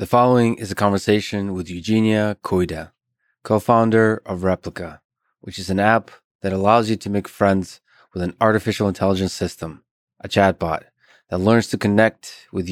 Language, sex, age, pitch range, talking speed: English, male, 20-39, 90-105 Hz, 155 wpm